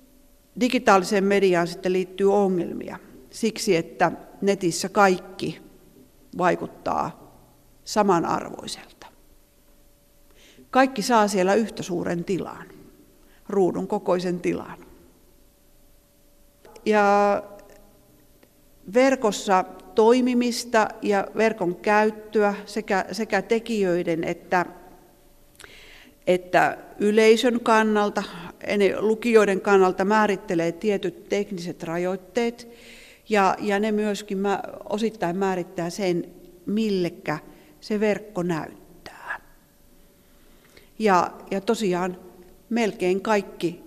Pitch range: 180-215 Hz